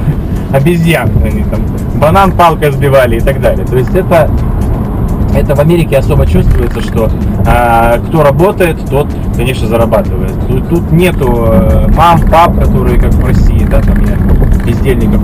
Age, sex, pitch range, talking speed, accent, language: 20-39, male, 95-135 Hz, 140 wpm, native, Russian